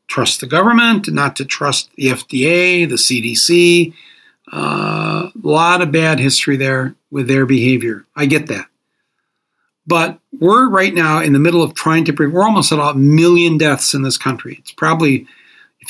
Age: 60-79